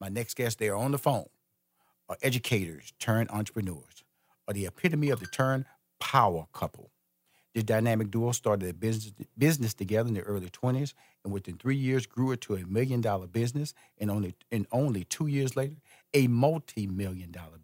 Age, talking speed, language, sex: 50-69, 175 wpm, English, male